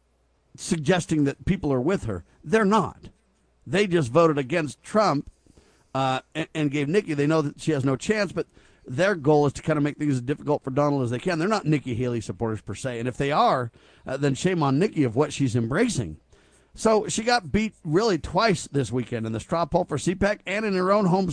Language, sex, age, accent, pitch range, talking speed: English, male, 50-69, American, 130-170 Hz, 225 wpm